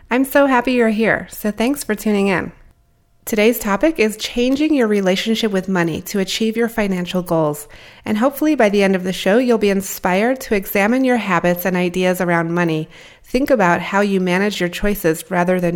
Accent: American